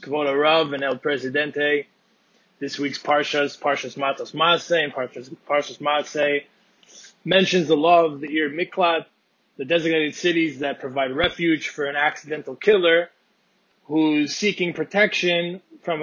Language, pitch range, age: English, 145-190 Hz, 20-39